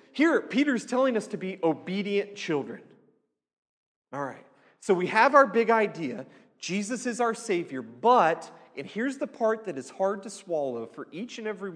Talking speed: 175 wpm